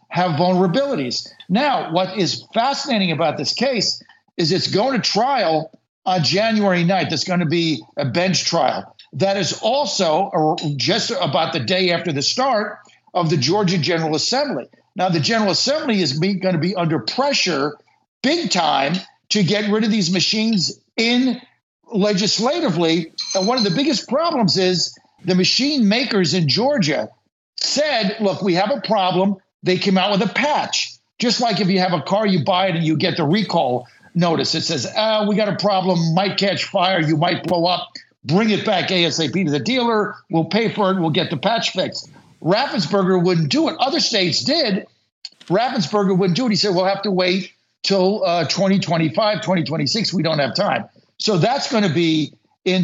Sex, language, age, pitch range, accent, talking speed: male, English, 60-79, 170-210 Hz, American, 180 wpm